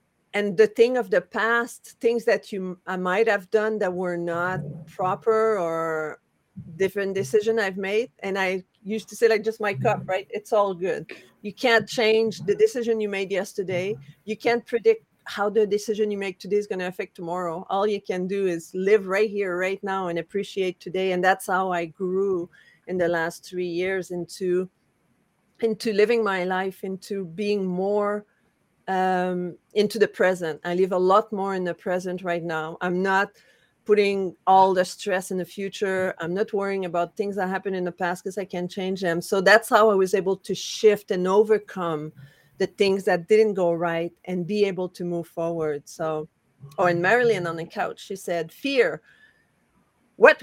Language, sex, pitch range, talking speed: English, female, 175-210 Hz, 190 wpm